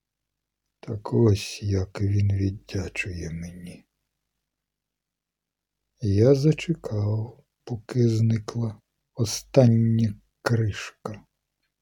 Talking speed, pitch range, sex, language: 60 wpm, 105-130 Hz, male, Ukrainian